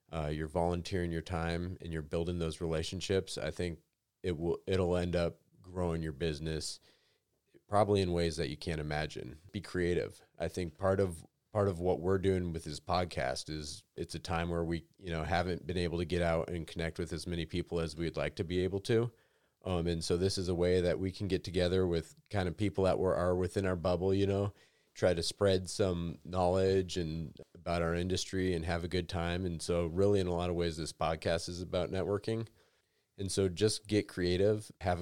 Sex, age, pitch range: male, 30-49, 85-95 Hz